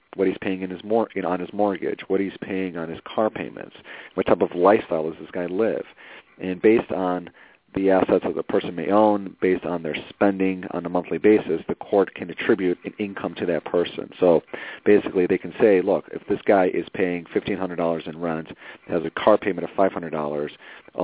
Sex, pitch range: male, 85-95 Hz